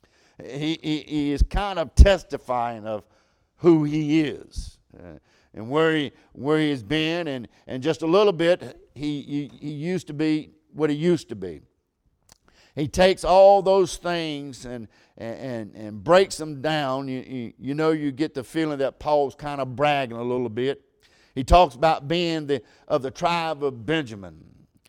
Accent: American